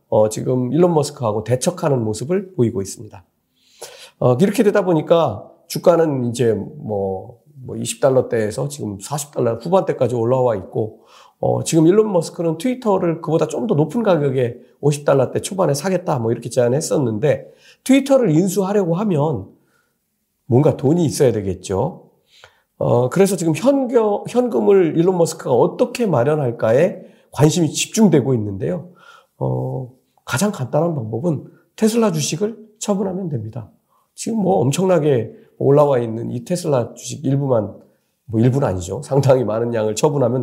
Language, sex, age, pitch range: Korean, male, 40-59, 115-180 Hz